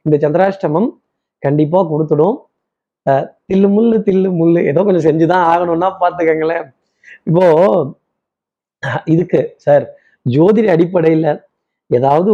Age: 30-49